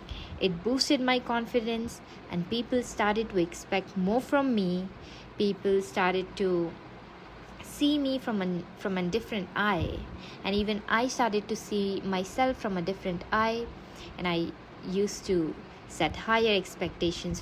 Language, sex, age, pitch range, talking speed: English, female, 20-39, 180-230 Hz, 140 wpm